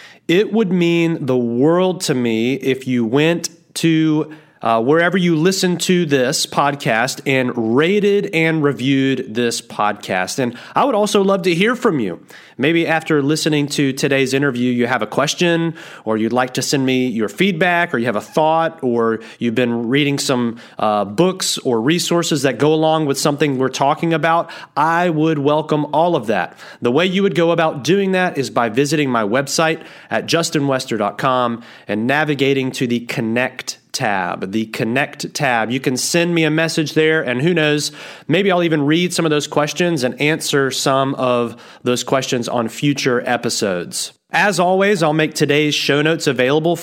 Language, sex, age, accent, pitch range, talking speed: English, male, 30-49, American, 130-165 Hz, 175 wpm